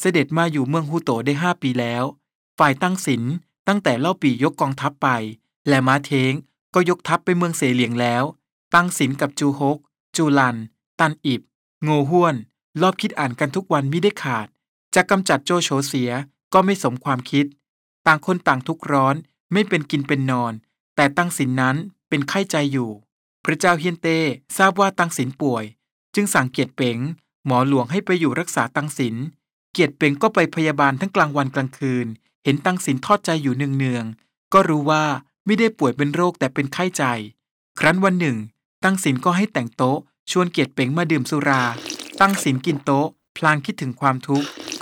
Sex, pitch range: male, 135-175 Hz